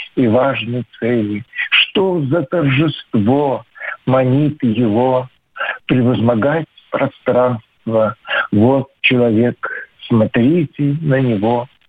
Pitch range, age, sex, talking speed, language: 125-150 Hz, 60-79, male, 75 wpm, Russian